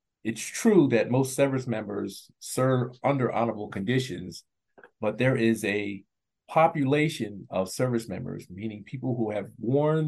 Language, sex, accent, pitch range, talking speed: English, male, American, 105-130 Hz, 135 wpm